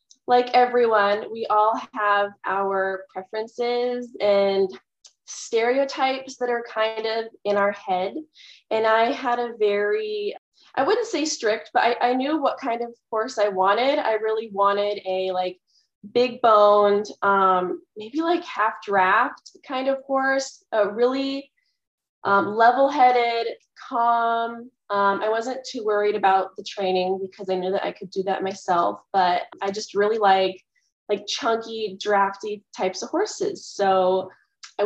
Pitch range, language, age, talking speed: 200-245 Hz, English, 20-39, 145 wpm